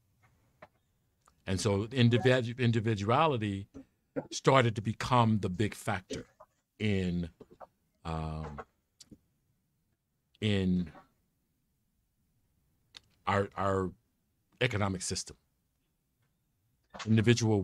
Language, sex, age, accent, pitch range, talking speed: English, male, 50-69, American, 95-120 Hz, 60 wpm